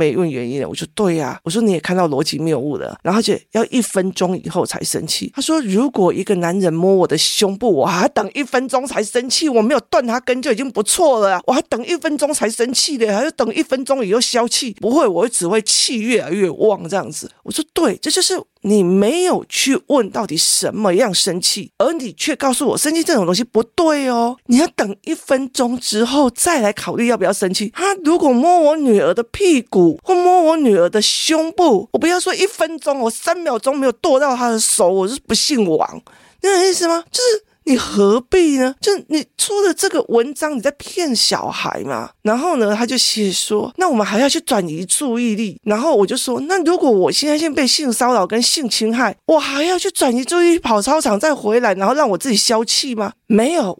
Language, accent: Chinese, native